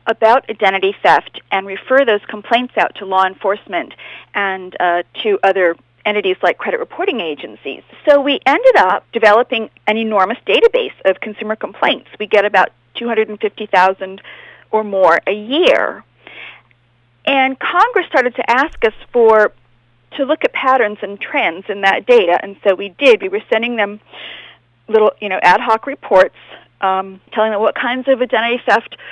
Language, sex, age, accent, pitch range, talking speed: English, female, 40-59, American, 195-260 Hz, 165 wpm